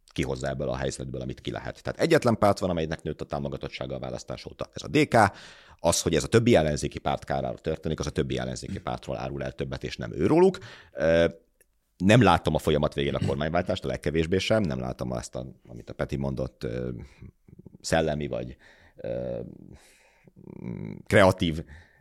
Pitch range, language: 70-85 Hz, Hungarian